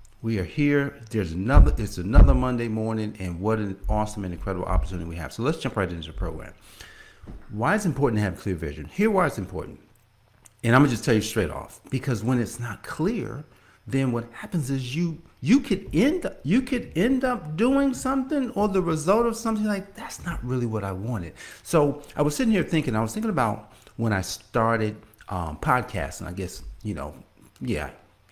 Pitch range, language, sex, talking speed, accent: 95-150 Hz, English, male, 205 wpm, American